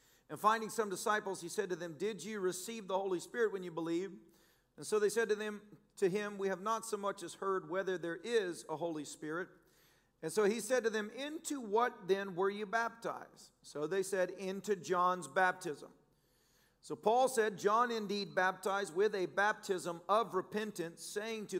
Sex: male